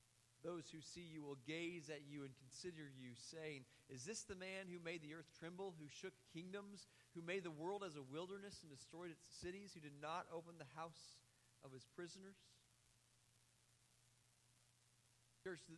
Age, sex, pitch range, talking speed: 40-59, male, 125-180 Hz, 170 wpm